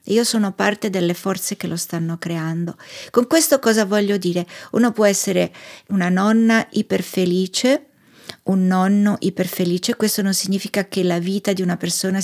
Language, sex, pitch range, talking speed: Italian, female, 180-215 Hz, 155 wpm